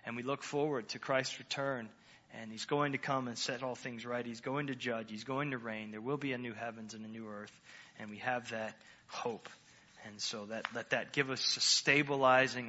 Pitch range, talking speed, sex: 115-135 Hz, 230 wpm, male